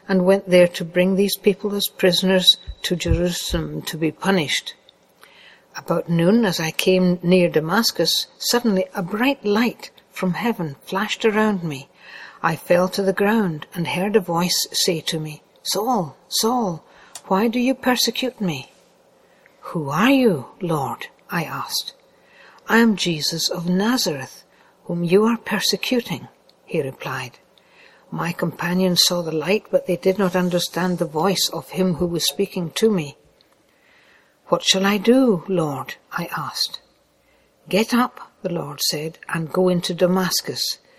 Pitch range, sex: 170-205 Hz, female